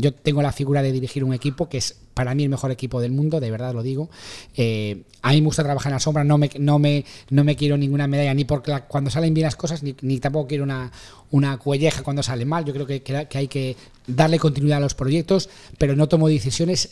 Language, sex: Spanish, male